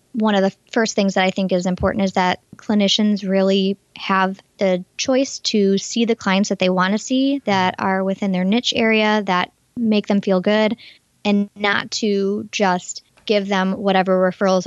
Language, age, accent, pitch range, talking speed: English, 20-39, American, 185-210 Hz, 185 wpm